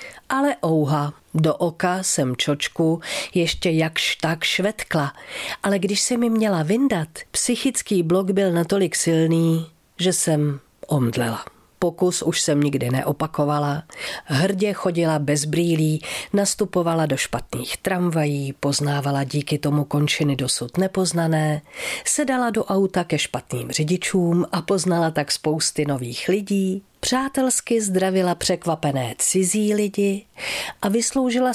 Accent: native